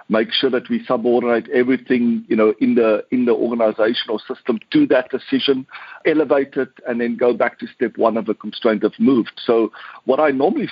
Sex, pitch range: male, 115-155 Hz